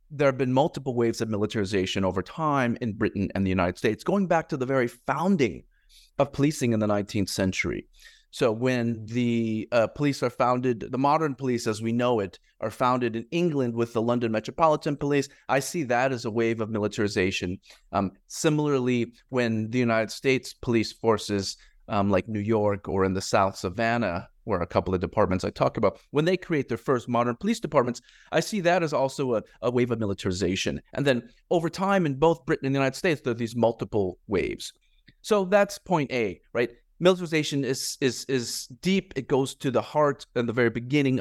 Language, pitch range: English, 105-145 Hz